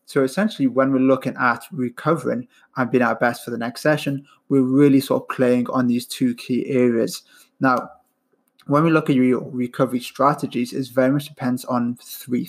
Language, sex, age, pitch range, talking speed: English, male, 20-39, 120-135 Hz, 190 wpm